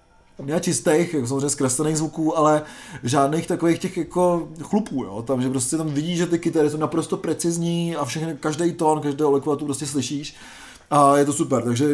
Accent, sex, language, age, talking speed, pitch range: native, male, Czech, 30-49, 180 wpm, 135-160 Hz